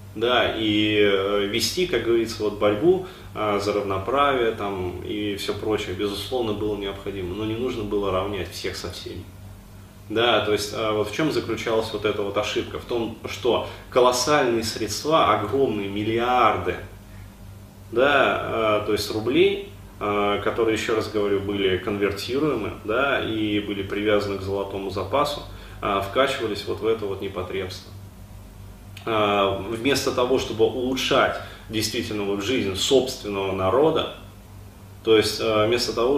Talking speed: 135 wpm